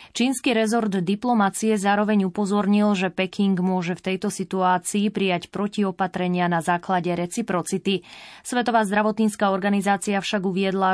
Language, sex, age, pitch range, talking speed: Slovak, female, 20-39, 180-210 Hz, 115 wpm